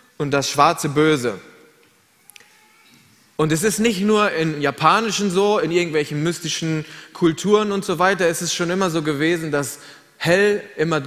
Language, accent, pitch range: German, German, 155-200 Hz